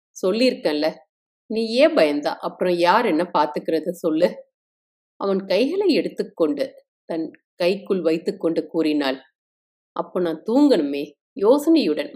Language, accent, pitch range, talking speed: Tamil, native, 160-195 Hz, 100 wpm